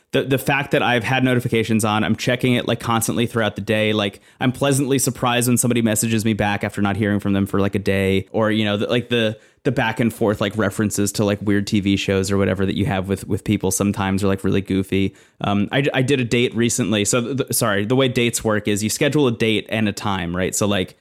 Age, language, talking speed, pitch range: 20-39, English, 255 wpm, 105-125 Hz